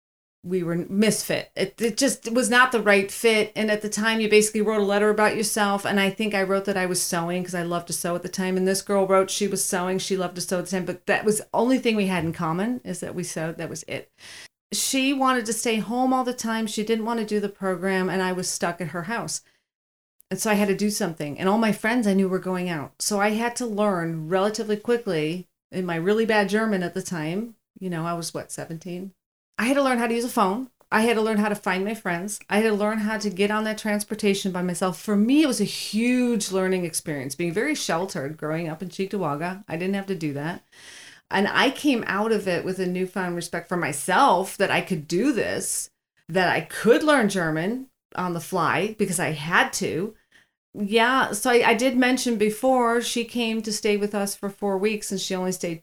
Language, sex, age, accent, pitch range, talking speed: English, female, 40-59, American, 180-220 Hz, 245 wpm